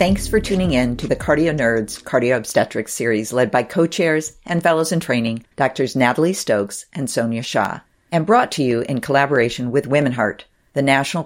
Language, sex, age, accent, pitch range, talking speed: English, female, 50-69, American, 125-165 Hz, 185 wpm